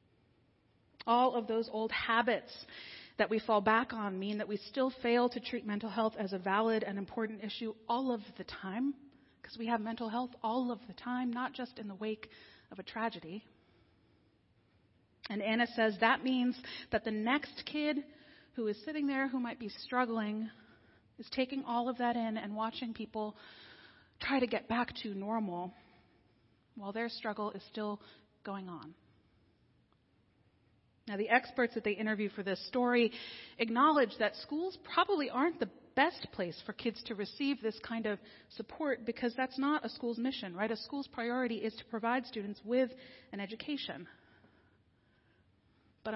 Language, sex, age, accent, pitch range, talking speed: English, female, 30-49, American, 205-250 Hz, 165 wpm